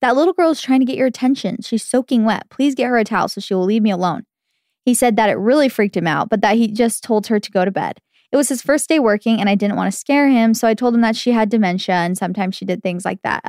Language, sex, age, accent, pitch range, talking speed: English, female, 20-39, American, 200-245 Hz, 305 wpm